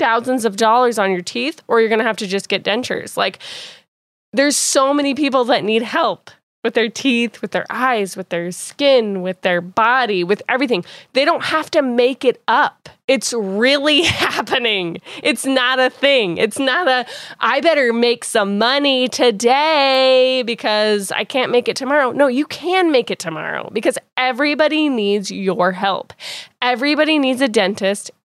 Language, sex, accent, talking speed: English, female, American, 170 wpm